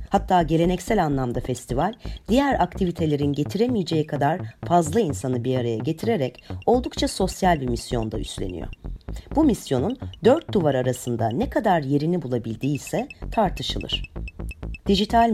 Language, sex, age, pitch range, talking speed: English, female, 40-59, 120-200 Hz, 115 wpm